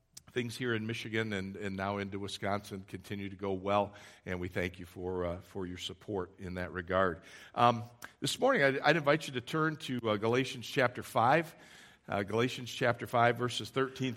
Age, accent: 50-69, American